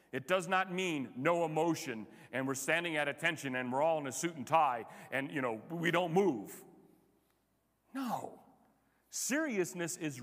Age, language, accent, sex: 40-59, English, American, male